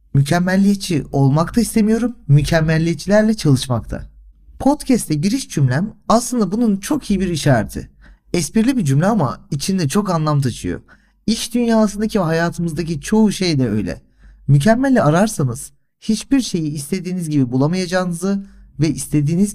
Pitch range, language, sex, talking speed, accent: 140-210 Hz, Turkish, male, 120 wpm, native